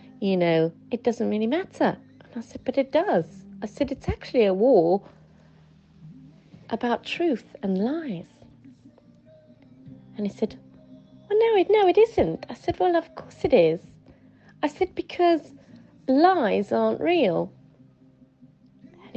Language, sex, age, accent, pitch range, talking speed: English, female, 30-49, British, 175-270 Hz, 140 wpm